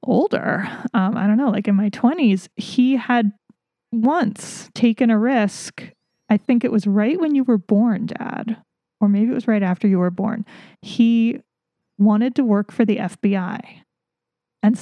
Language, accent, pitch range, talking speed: English, American, 200-235 Hz, 170 wpm